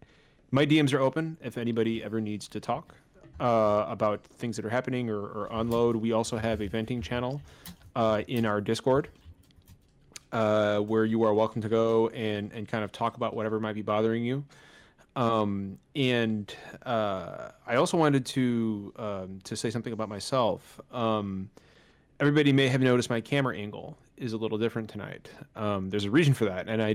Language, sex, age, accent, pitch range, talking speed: English, male, 30-49, American, 105-125 Hz, 180 wpm